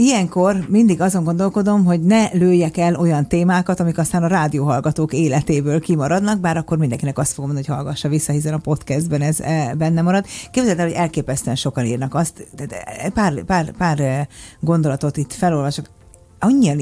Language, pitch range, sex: Hungarian, 145-180 Hz, female